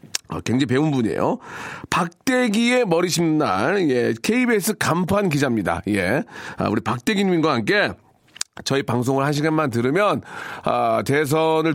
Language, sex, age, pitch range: Korean, male, 40-59, 140-205 Hz